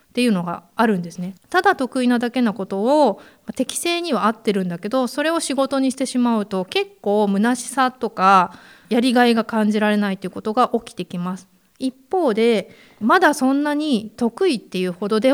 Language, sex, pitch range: Japanese, female, 195-260 Hz